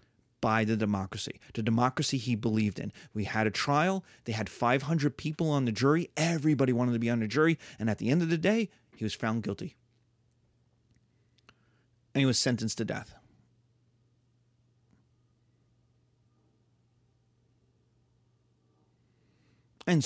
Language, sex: English, male